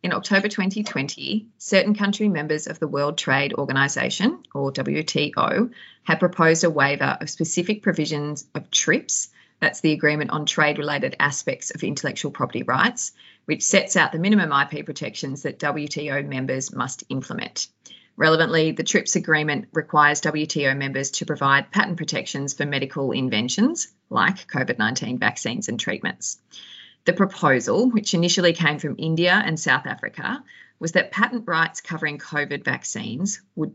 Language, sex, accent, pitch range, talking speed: English, female, Australian, 145-190 Hz, 145 wpm